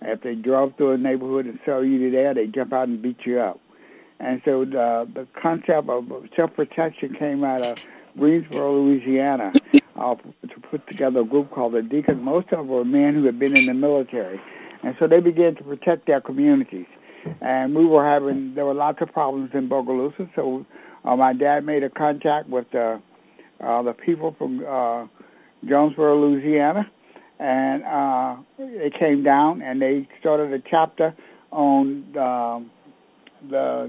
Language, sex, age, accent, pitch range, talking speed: English, male, 60-79, American, 130-155 Hz, 175 wpm